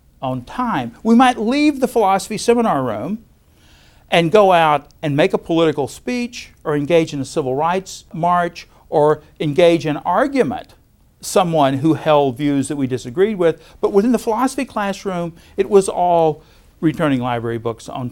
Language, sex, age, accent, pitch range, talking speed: English, male, 50-69, American, 135-195 Hz, 160 wpm